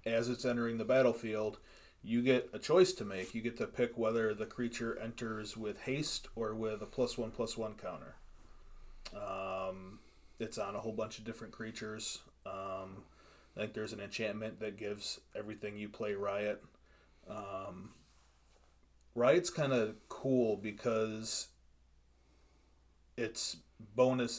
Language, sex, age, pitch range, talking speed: English, male, 30-49, 100-115 Hz, 145 wpm